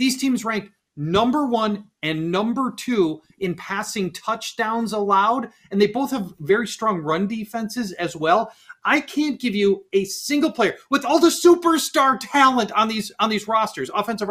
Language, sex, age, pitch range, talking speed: English, male, 30-49, 155-230 Hz, 170 wpm